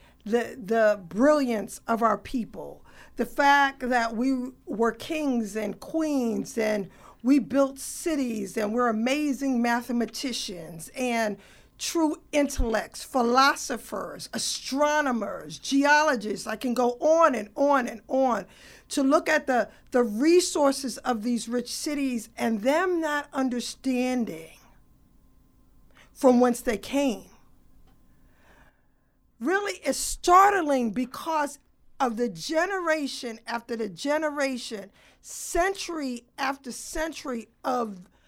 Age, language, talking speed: 50-69, English, 105 wpm